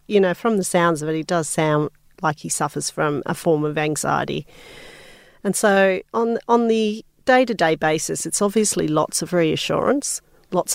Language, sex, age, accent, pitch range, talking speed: English, female, 40-59, Australian, 160-195 Hz, 175 wpm